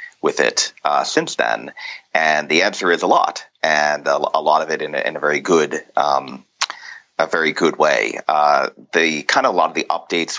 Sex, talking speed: male, 215 wpm